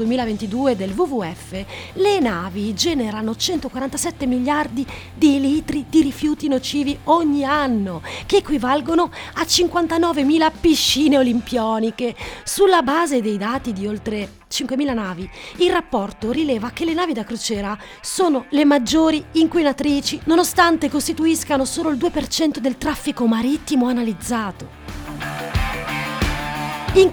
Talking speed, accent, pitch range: 115 wpm, native, 215-305 Hz